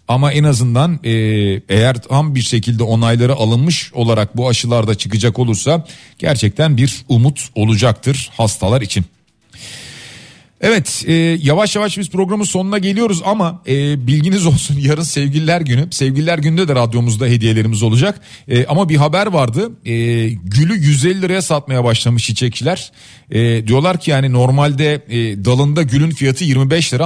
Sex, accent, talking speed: male, native, 140 wpm